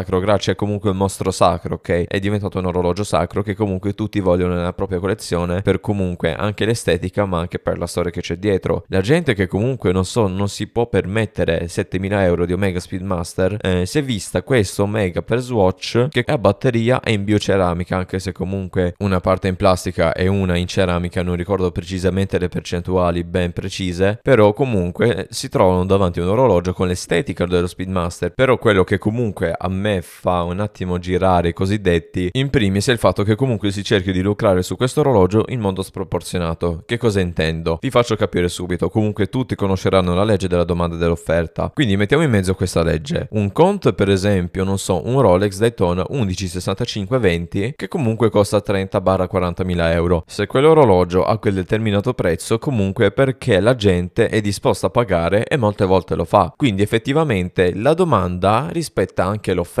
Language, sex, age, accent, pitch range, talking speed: Italian, male, 20-39, native, 90-105 Hz, 185 wpm